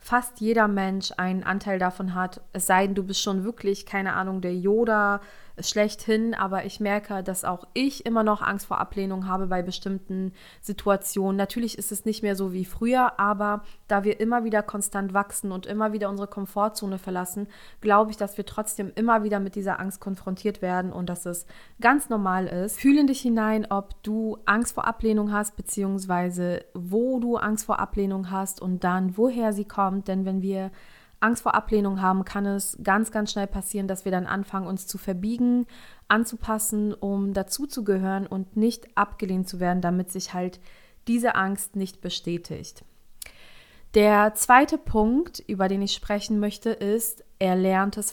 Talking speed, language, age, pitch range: 175 wpm, German, 20-39, 190-215 Hz